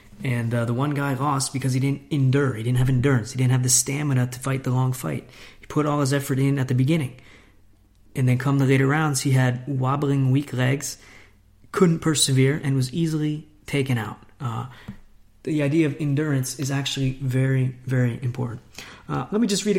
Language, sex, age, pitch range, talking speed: English, male, 30-49, 125-145 Hz, 200 wpm